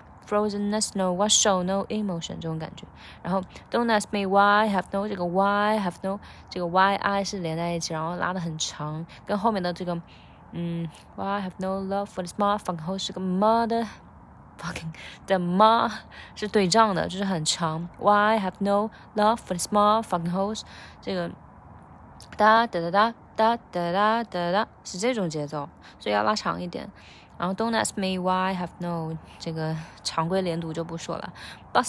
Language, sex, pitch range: Chinese, female, 175-210 Hz